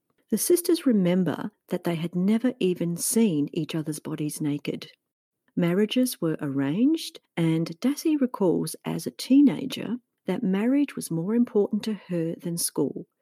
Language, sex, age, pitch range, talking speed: English, female, 50-69, 155-240 Hz, 140 wpm